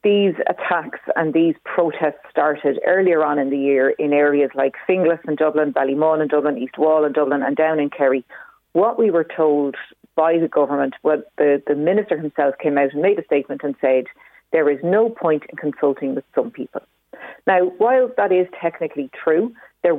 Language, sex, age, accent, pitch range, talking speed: English, female, 40-59, Irish, 145-175 Hz, 190 wpm